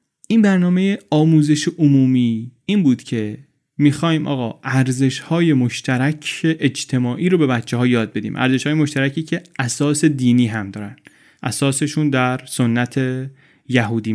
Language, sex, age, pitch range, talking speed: Persian, male, 30-49, 125-160 Hz, 125 wpm